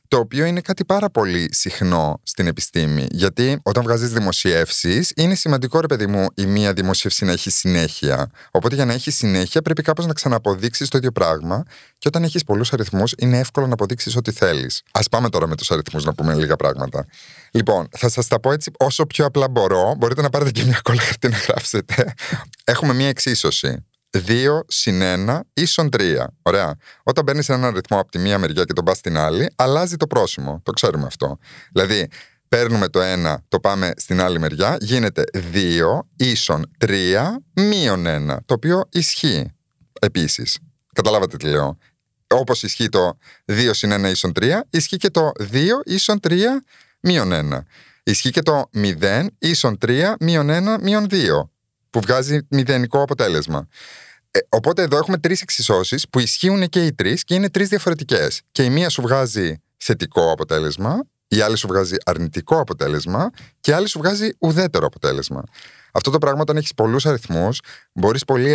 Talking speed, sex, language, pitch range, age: 175 wpm, male, Greek, 95-160 Hz, 30-49